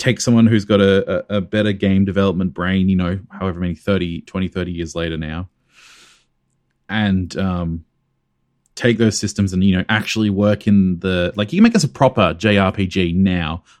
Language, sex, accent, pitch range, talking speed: English, male, Australian, 90-115 Hz, 185 wpm